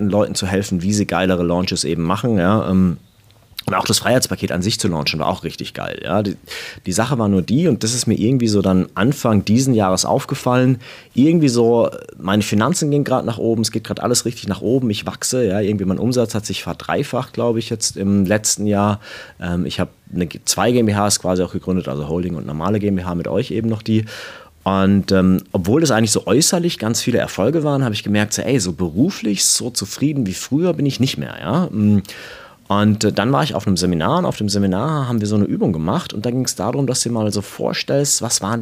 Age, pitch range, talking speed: 30-49, 95-125 Hz, 220 wpm